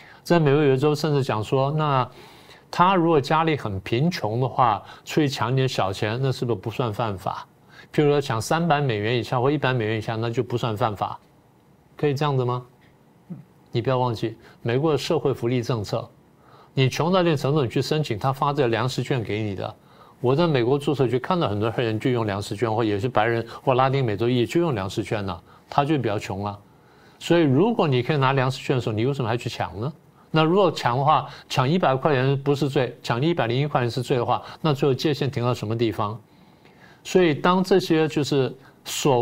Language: Chinese